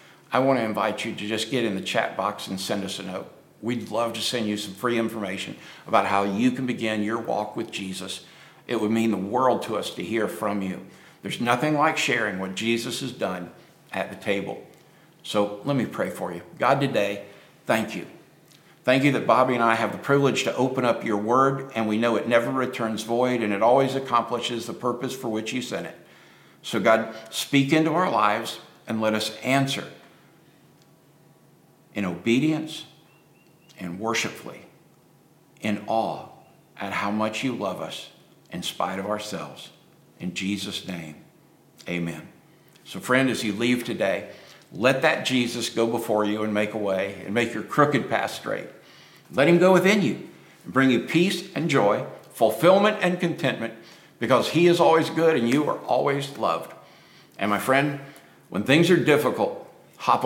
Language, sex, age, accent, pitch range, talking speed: English, male, 60-79, American, 105-135 Hz, 180 wpm